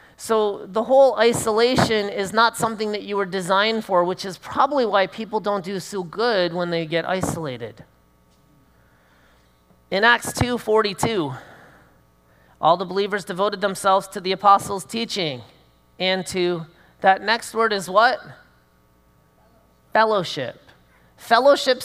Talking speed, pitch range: 130 wpm, 160-230 Hz